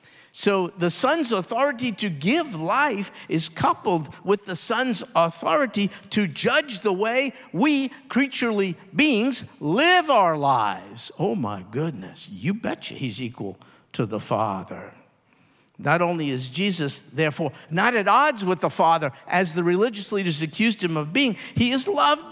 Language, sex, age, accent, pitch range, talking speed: English, male, 50-69, American, 150-230 Hz, 150 wpm